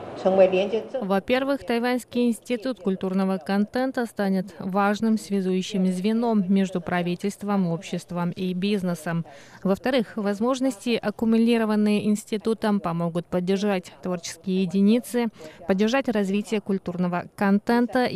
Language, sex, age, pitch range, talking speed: Russian, female, 20-39, 185-225 Hz, 85 wpm